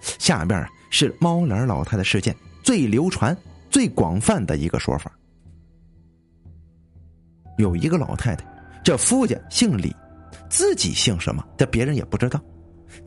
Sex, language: male, Chinese